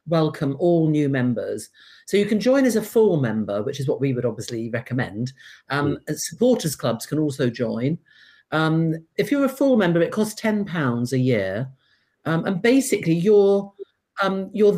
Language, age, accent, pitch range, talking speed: English, 50-69, British, 135-175 Hz, 180 wpm